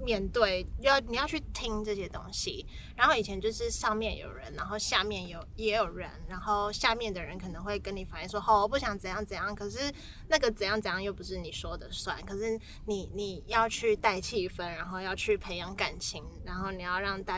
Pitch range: 195-240 Hz